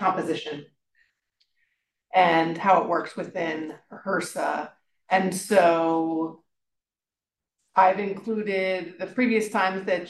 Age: 30-49